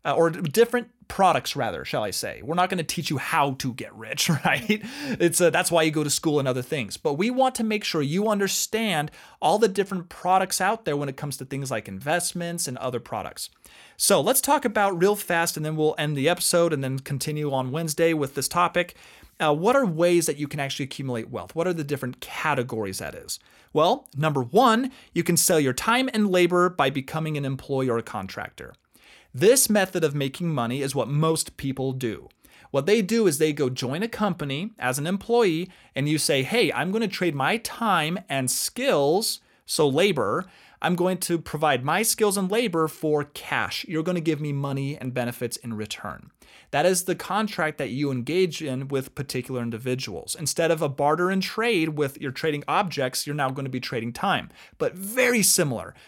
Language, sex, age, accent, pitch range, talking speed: English, male, 30-49, American, 135-185 Hz, 210 wpm